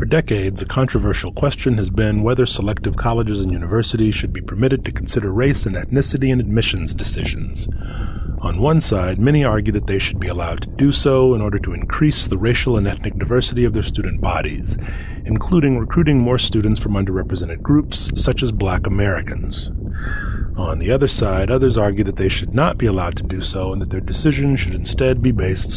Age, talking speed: 30-49, 195 wpm